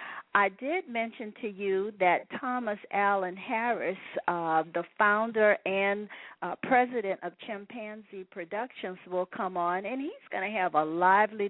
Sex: female